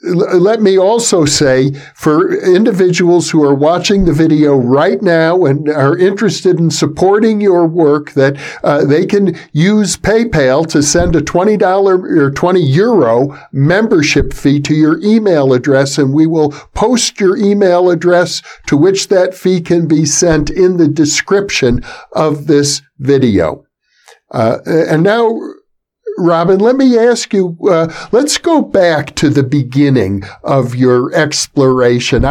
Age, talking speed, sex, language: 50-69, 145 wpm, male, English